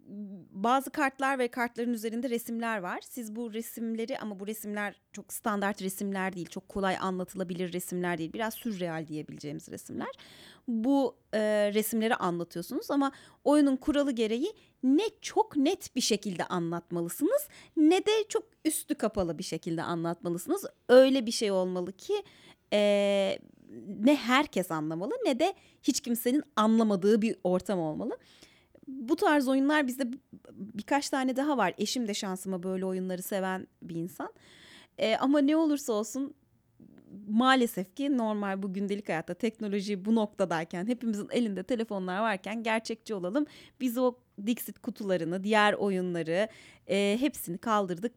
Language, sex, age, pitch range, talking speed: Turkish, female, 30-49, 185-260 Hz, 135 wpm